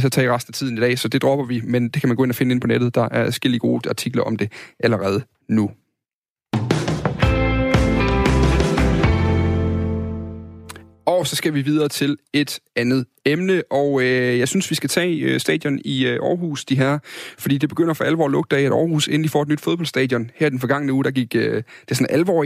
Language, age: Danish, 30-49